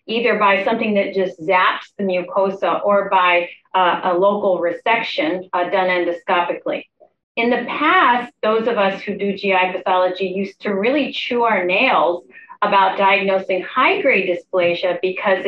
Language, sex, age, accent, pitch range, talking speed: English, female, 40-59, American, 185-230 Hz, 145 wpm